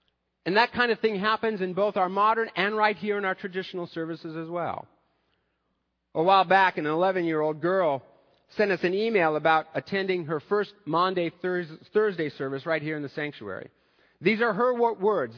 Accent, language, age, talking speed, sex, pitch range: American, English, 50-69, 175 wpm, male, 165-210 Hz